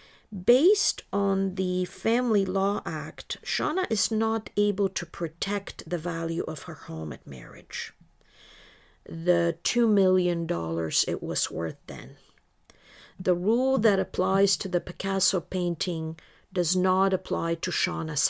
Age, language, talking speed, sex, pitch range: 50-69, English, 130 wpm, female, 170-205 Hz